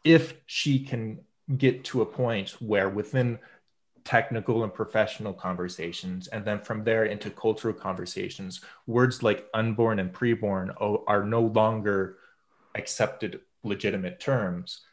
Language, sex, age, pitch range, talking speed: English, male, 30-49, 100-125 Hz, 125 wpm